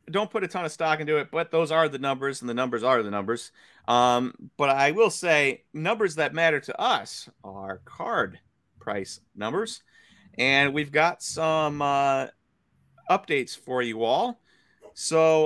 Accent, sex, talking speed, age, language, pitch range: American, male, 165 wpm, 30-49, English, 125-160 Hz